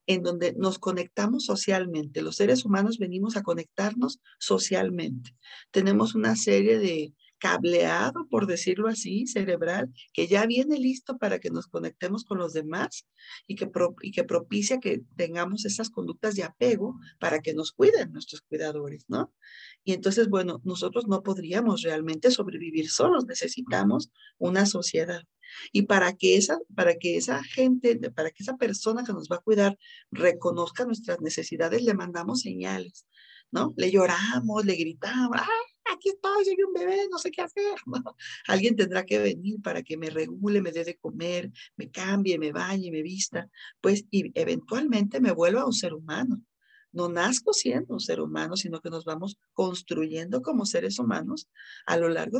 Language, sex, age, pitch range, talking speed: Spanish, female, 40-59, 175-240 Hz, 170 wpm